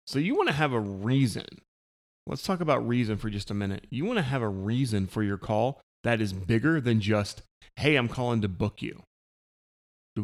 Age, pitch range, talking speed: 30-49, 105-135 Hz, 200 wpm